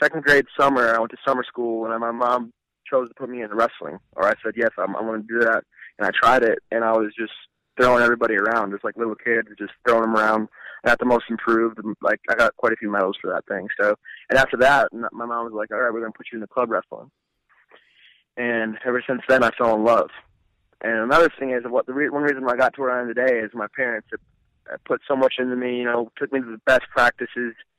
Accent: American